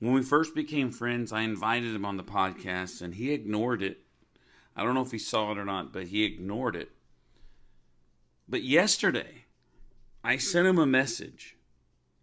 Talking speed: 170 wpm